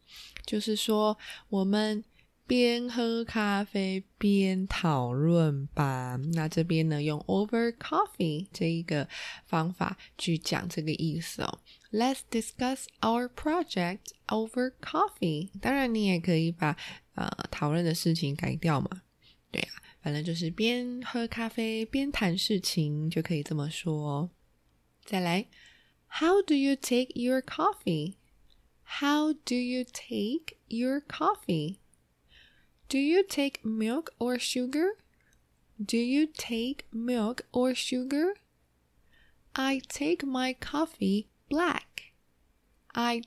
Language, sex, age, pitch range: Chinese, female, 20-39, 170-270 Hz